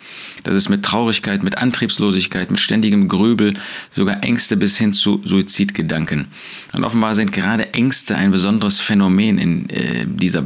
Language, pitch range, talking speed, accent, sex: German, 95-115 Hz, 150 wpm, German, male